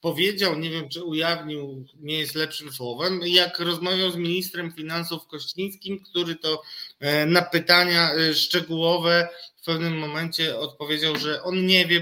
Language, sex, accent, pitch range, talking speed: Polish, male, native, 150-210 Hz, 140 wpm